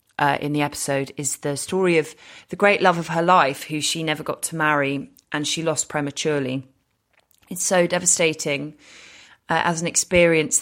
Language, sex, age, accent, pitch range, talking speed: English, female, 20-39, British, 145-175 Hz, 175 wpm